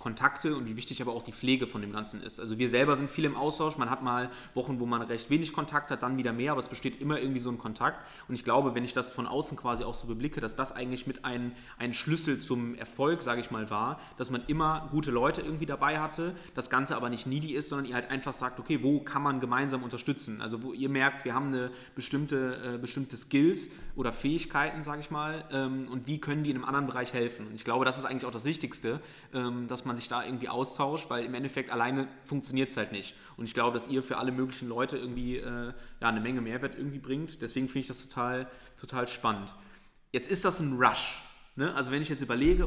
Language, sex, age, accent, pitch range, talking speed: German, male, 20-39, German, 125-145 Hz, 240 wpm